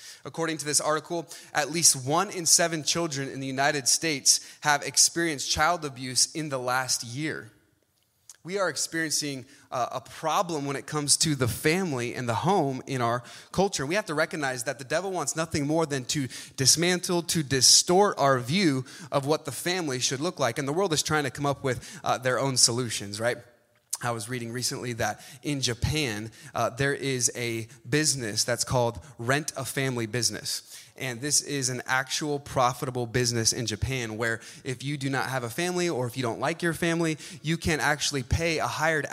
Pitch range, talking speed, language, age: 130-170 Hz, 190 wpm, English, 20-39